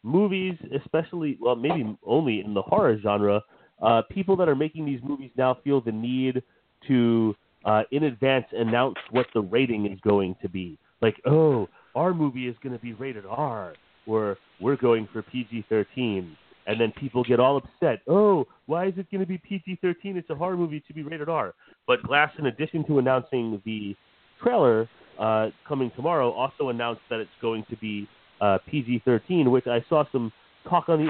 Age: 30-49